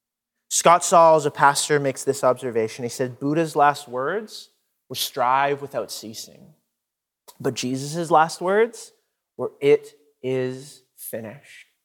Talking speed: 125 wpm